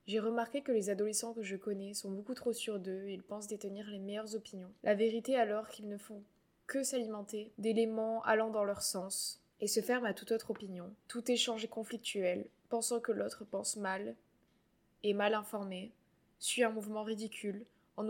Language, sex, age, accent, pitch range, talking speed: French, female, 20-39, French, 200-225 Hz, 190 wpm